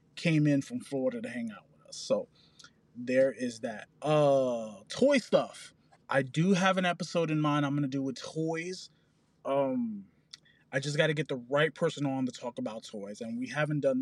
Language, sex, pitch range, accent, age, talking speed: English, male, 140-180 Hz, American, 20-39, 200 wpm